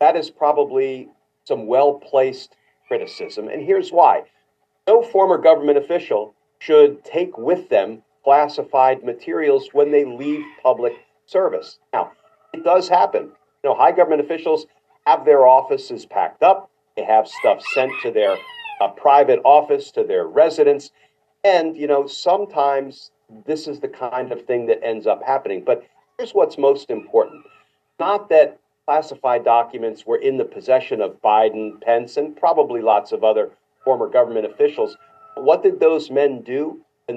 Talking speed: 150 wpm